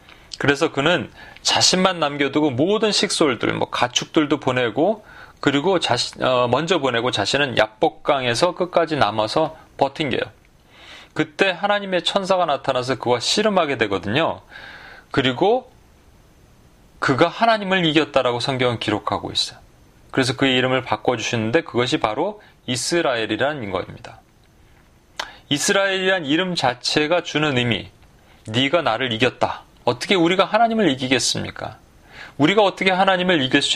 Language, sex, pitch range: Korean, male, 125-175 Hz